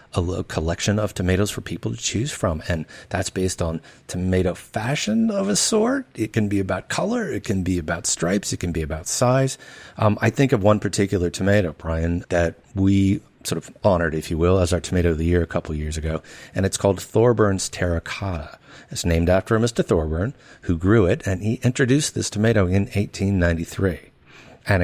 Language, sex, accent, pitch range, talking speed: English, male, American, 85-115 Hz, 195 wpm